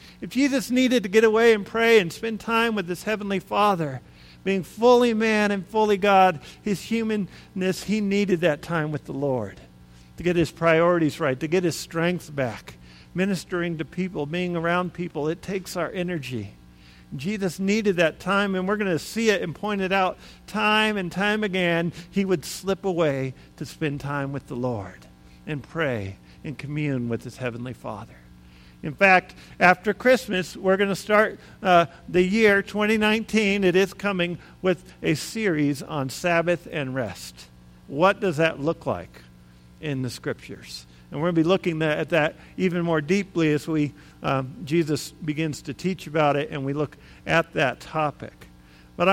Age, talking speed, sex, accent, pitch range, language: 50-69, 175 wpm, male, American, 140-200 Hz, English